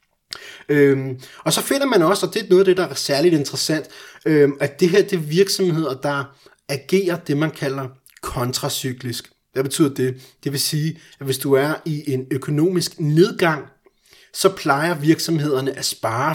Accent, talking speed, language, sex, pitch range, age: native, 175 wpm, Danish, male, 135-165 Hz, 30-49